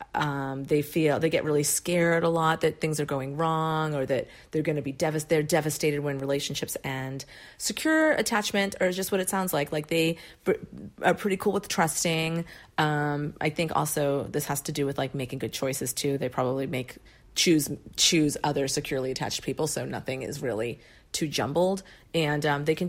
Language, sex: English, female